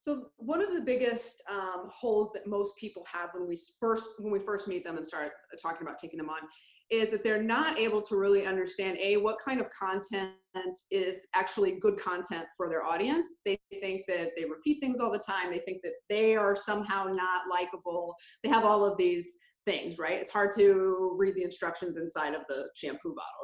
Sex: female